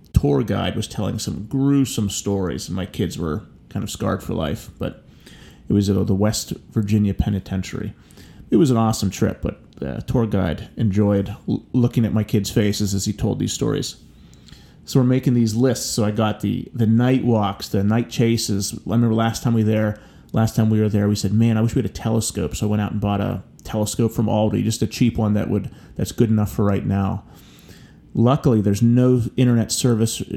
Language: English